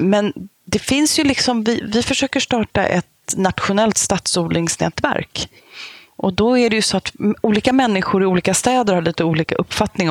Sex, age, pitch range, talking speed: female, 30-49, 155-195 Hz, 165 wpm